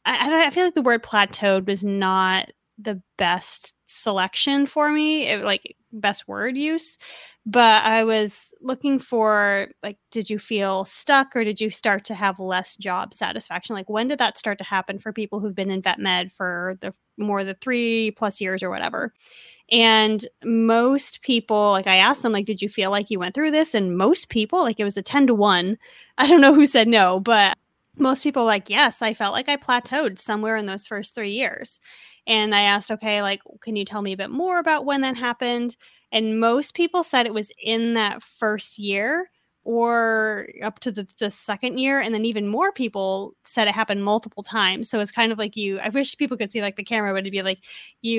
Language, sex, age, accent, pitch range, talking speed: English, female, 20-39, American, 200-255 Hz, 215 wpm